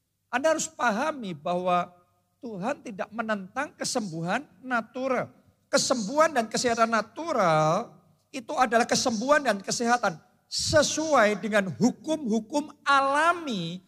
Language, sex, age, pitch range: Indonesian, male, 50-69, 205-305 Hz